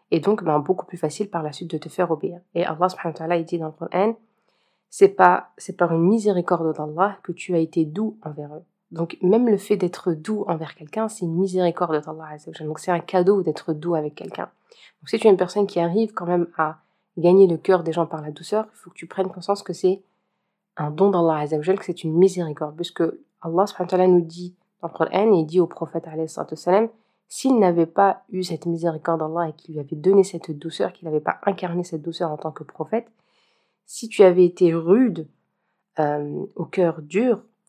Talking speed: 220 wpm